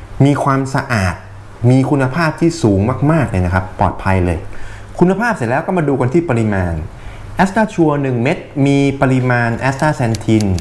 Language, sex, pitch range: Thai, male, 100-135 Hz